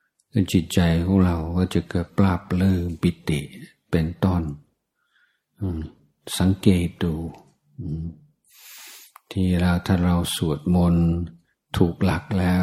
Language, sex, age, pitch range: Thai, male, 60-79, 85-95 Hz